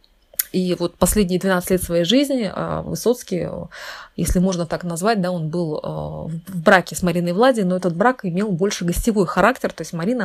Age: 20-39